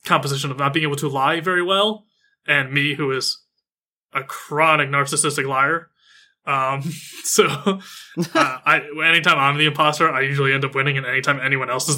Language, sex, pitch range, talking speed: English, male, 135-160 Hz, 175 wpm